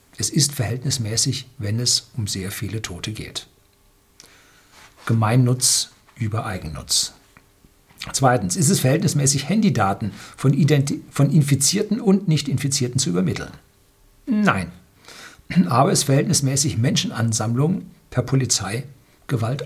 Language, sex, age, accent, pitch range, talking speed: German, male, 60-79, German, 120-155 Hz, 105 wpm